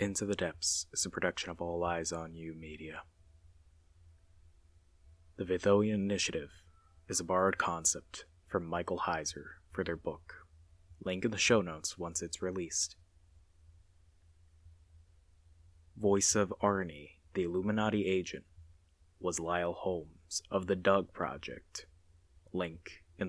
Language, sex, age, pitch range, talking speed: English, male, 20-39, 85-90 Hz, 125 wpm